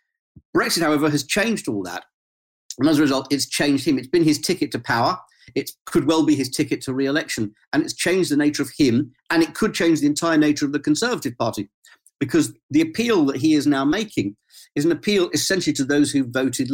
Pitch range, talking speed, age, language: 135-190 Hz, 220 wpm, 50-69, English